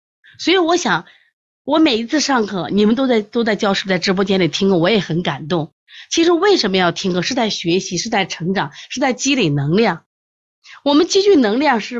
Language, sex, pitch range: Chinese, female, 175-260 Hz